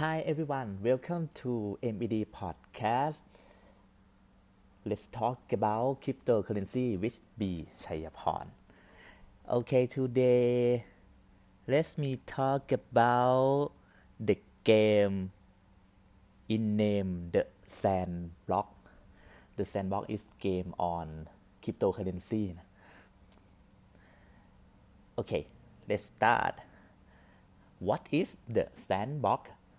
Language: Thai